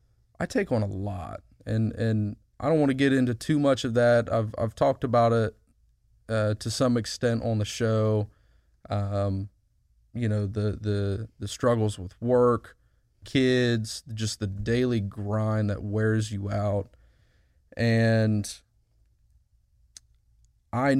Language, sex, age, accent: English, male, 30-49, American